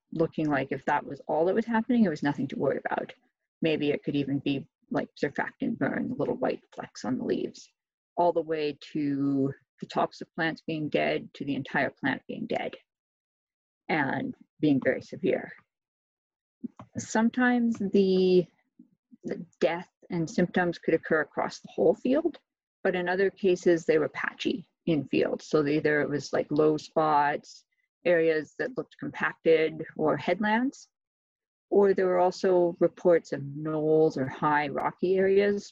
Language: English